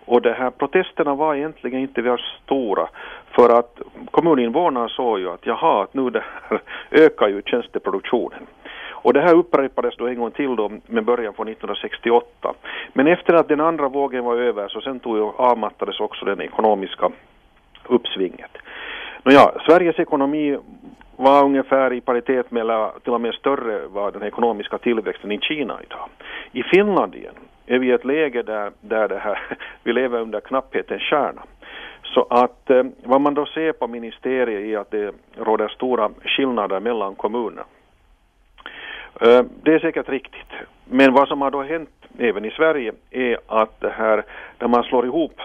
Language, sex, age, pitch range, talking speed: Swedish, male, 50-69, 115-140 Hz, 165 wpm